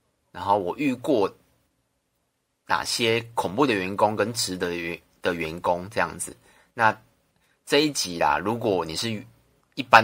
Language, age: Chinese, 30-49